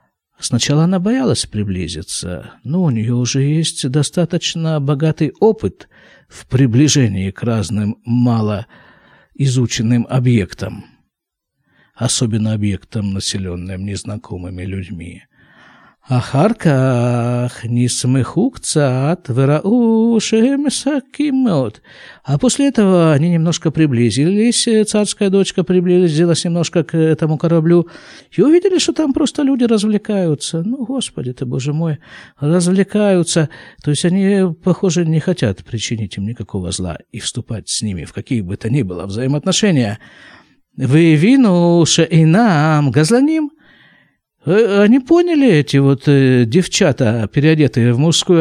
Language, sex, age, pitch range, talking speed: Russian, male, 50-69, 120-190 Hz, 105 wpm